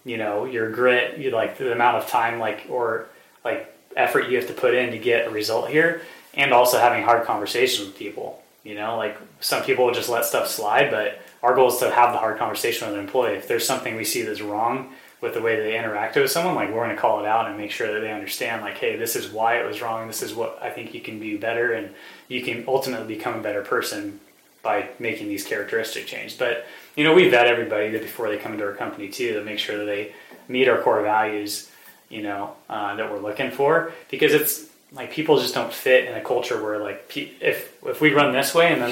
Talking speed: 250 wpm